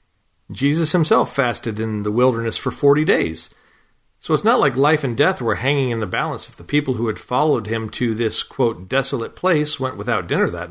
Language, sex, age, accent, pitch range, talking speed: English, male, 40-59, American, 115-145 Hz, 205 wpm